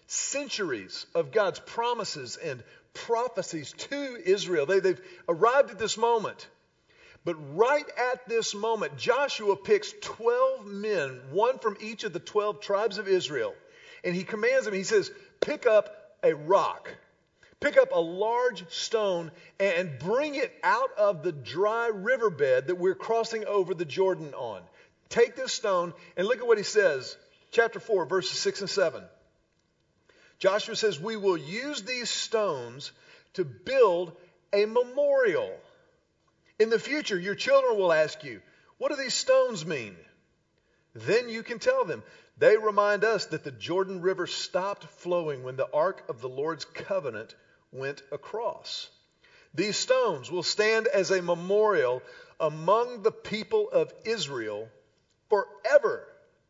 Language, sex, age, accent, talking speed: English, male, 40-59, American, 145 wpm